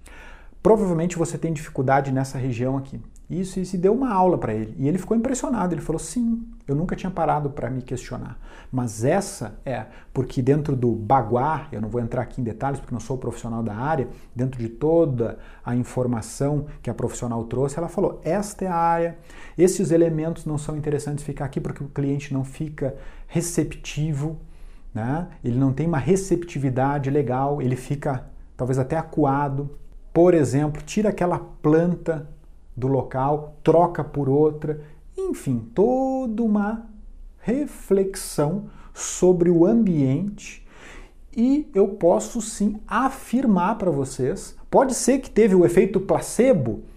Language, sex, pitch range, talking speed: Portuguese, male, 135-185 Hz, 155 wpm